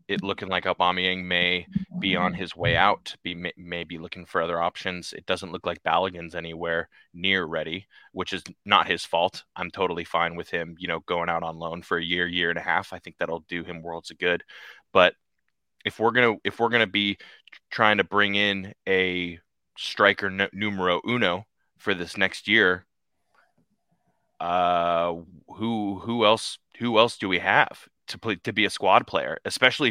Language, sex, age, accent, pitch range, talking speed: English, male, 20-39, American, 85-100 Hz, 185 wpm